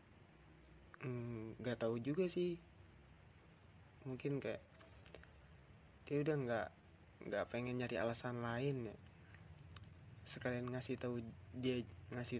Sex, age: male, 20-39